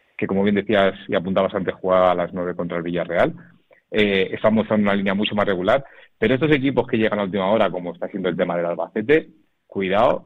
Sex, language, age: male, Spanish, 40-59